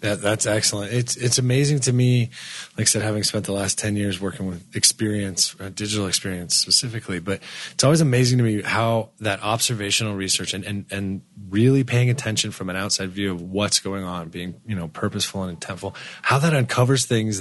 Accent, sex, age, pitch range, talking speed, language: American, male, 20-39, 100-125 Hz, 200 wpm, English